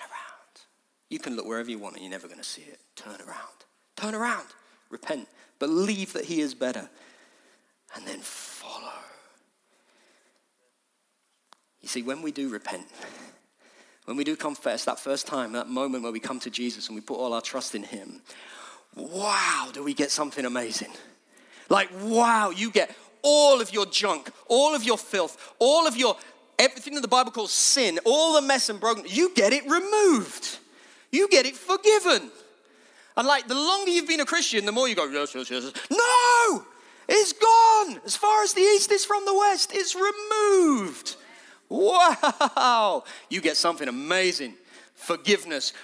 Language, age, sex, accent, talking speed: English, 40-59, male, British, 170 wpm